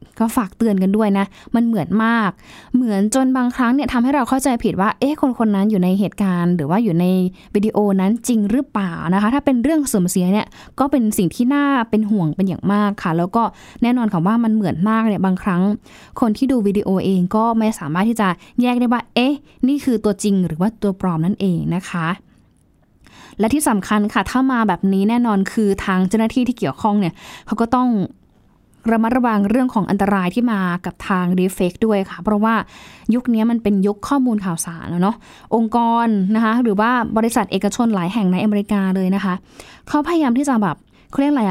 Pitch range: 195-250 Hz